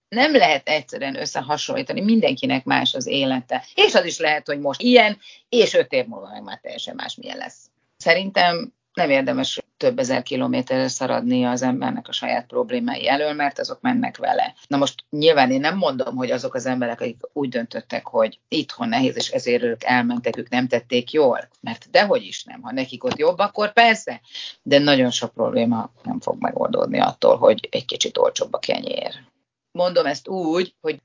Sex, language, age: female, Hungarian, 30-49